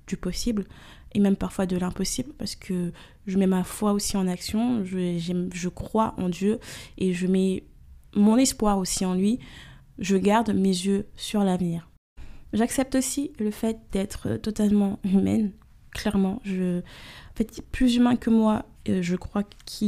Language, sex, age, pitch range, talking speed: French, female, 20-39, 190-225 Hz, 160 wpm